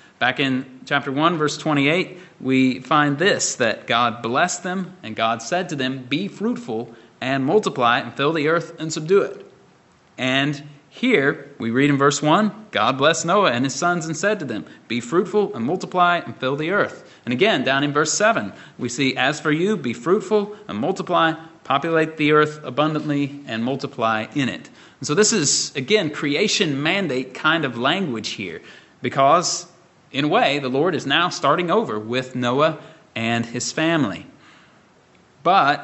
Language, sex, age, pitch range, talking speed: English, male, 30-49, 130-170 Hz, 175 wpm